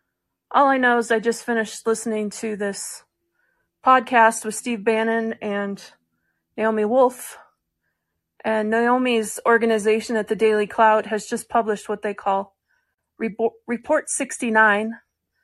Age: 30-49